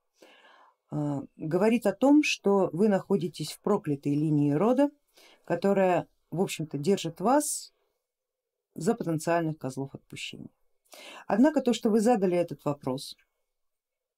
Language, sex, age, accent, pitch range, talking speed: Russian, female, 50-69, native, 155-230 Hz, 110 wpm